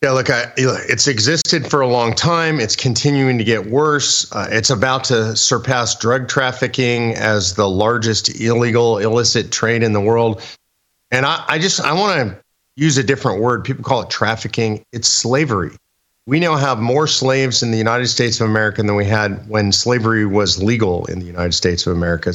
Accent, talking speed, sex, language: American, 190 wpm, male, English